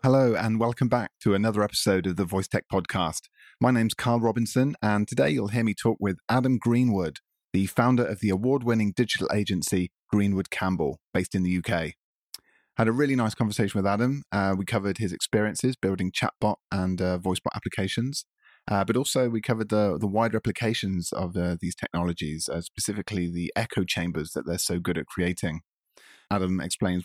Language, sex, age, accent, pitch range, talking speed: English, male, 30-49, British, 90-110 Hz, 180 wpm